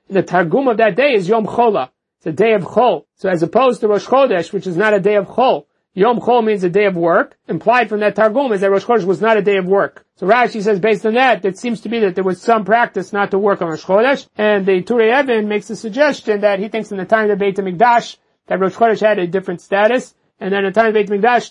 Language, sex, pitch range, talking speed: English, male, 190-220 Hz, 275 wpm